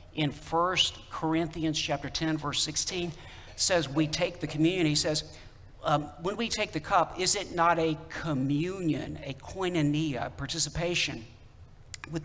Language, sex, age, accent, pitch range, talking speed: English, male, 60-79, American, 125-165 Hz, 140 wpm